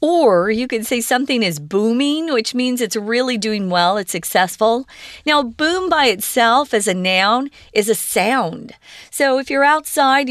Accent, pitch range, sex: American, 195-255 Hz, female